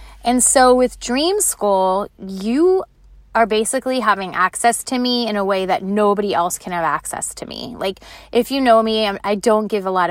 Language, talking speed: English, 195 wpm